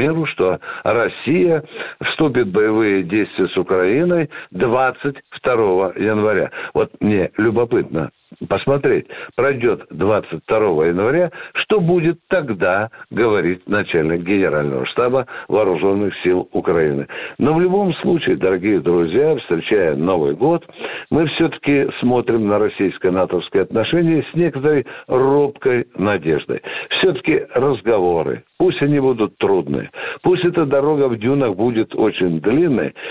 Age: 60-79